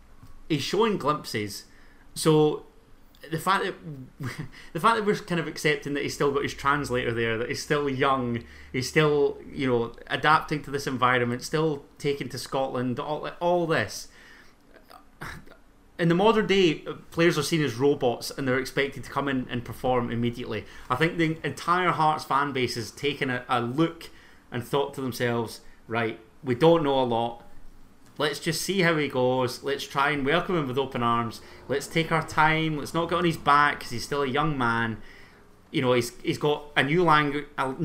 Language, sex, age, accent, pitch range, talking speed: English, male, 30-49, British, 120-155 Hz, 185 wpm